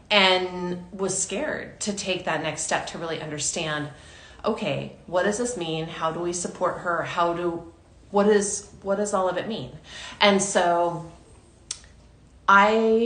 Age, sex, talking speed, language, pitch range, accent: 30-49, female, 155 wpm, English, 155-195 Hz, American